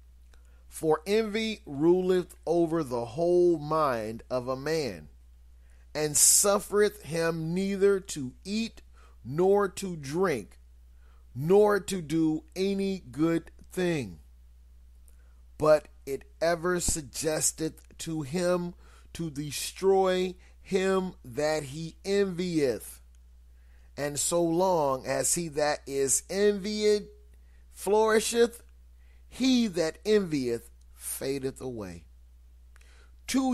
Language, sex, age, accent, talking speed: English, male, 40-59, American, 95 wpm